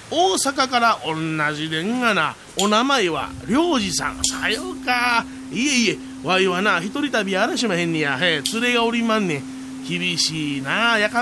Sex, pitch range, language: male, 170-265 Hz, Japanese